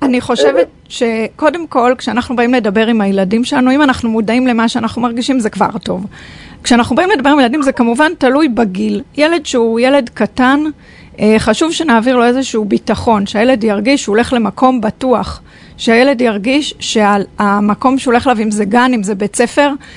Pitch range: 220-265 Hz